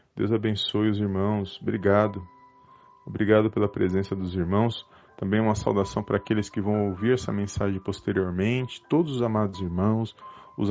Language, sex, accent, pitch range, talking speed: Portuguese, male, Brazilian, 100-130 Hz, 145 wpm